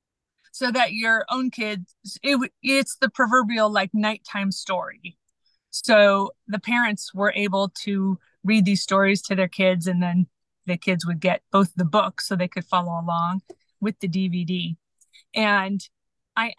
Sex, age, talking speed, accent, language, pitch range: female, 30-49, 150 wpm, American, English, 180-220 Hz